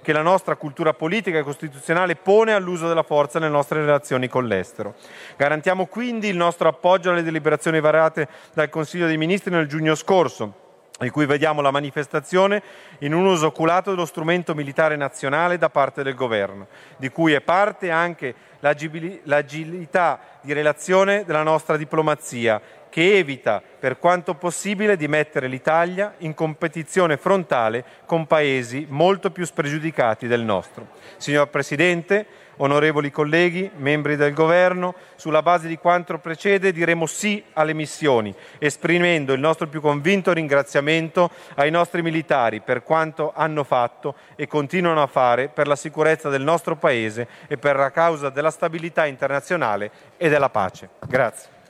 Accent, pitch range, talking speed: native, 145-175 Hz, 145 wpm